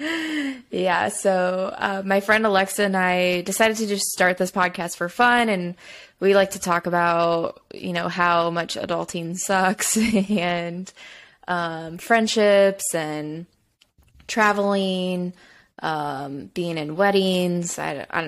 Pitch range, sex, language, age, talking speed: 170-200 Hz, female, English, 20-39, 130 wpm